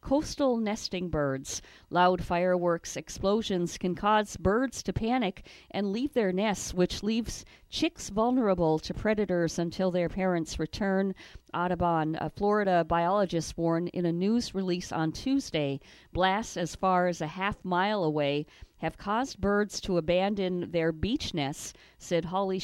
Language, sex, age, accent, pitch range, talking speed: English, female, 50-69, American, 175-225 Hz, 145 wpm